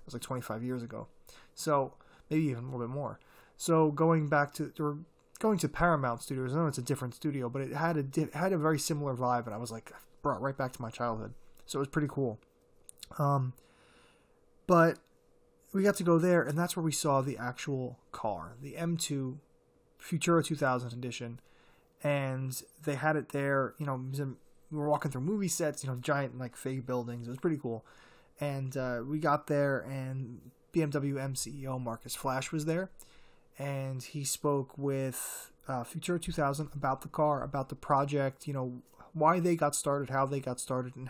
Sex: male